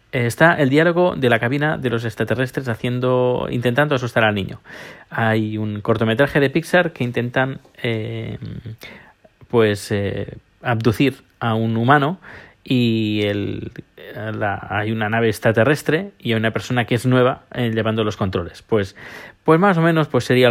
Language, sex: Spanish, male